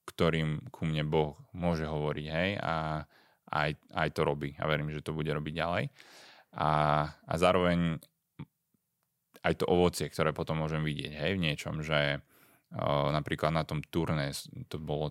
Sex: male